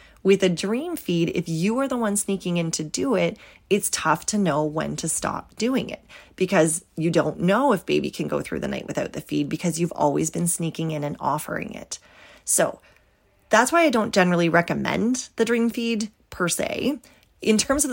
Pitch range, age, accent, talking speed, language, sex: 160-205 Hz, 30-49, American, 205 wpm, English, female